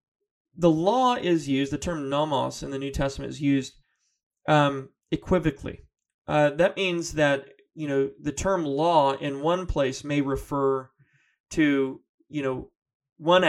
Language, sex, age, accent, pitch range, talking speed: English, male, 30-49, American, 135-155 Hz, 145 wpm